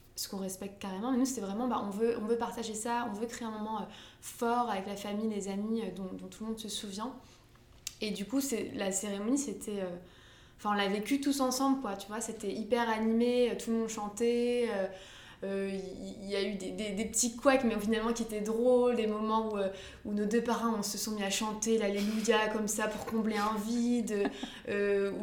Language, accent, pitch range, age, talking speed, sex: French, French, 200-235 Hz, 20-39, 235 wpm, female